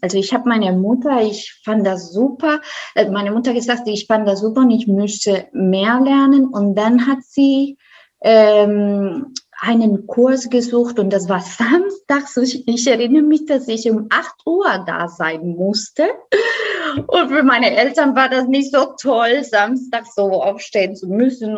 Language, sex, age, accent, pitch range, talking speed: English, female, 20-39, German, 200-265 Hz, 160 wpm